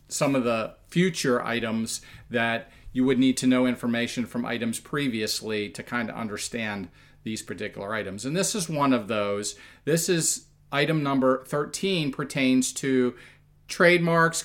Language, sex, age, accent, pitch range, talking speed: English, male, 40-59, American, 120-180 Hz, 150 wpm